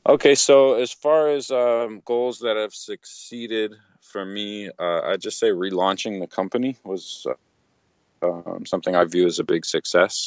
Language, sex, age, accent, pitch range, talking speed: English, male, 30-49, American, 85-100 Hz, 170 wpm